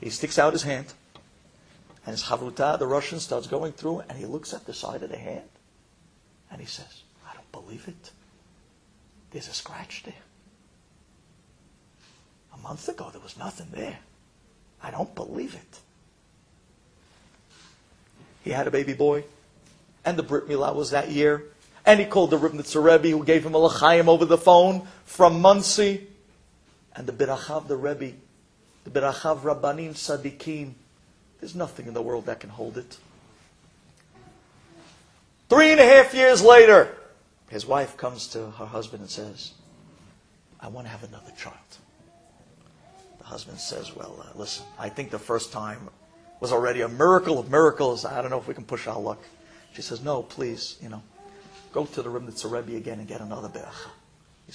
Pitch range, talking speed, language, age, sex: 135-180 Hz, 165 wpm, English, 50-69, male